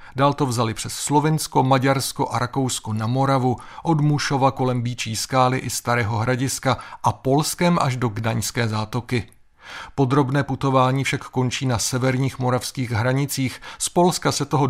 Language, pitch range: Czech, 120-140 Hz